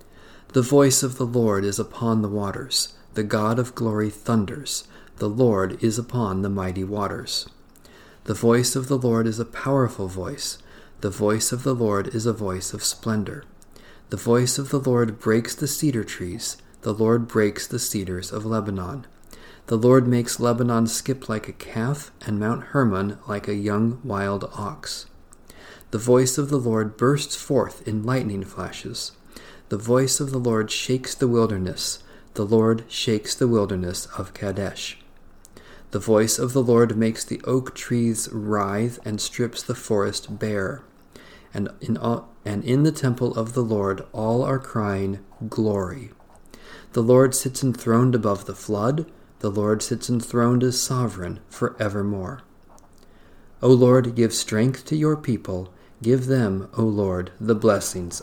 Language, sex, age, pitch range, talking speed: English, male, 40-59, 100-125 Hz, 155 wpm